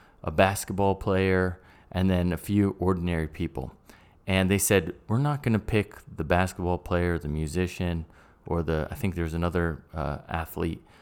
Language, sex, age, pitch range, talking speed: English, male, 20-39, 85-100 Hz, 165 wpm